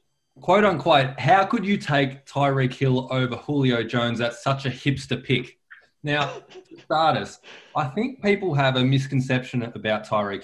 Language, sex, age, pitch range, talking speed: English, male, 20-39, 110-135 Hz, 160 wpm